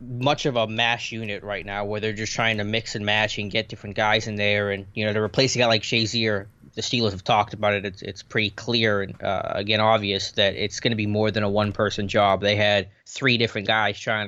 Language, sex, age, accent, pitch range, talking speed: English, male, 20-39, American, 105-115 Hz, 250 wpm